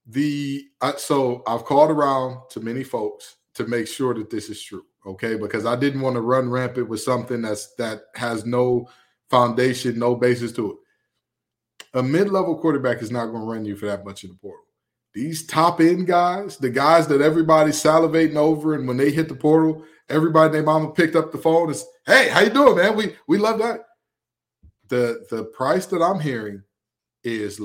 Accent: American